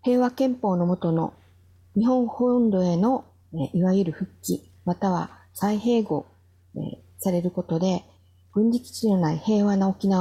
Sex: female